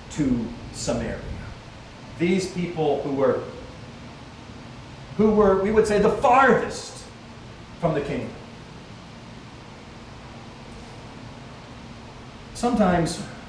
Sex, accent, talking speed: male, American, 75 wpm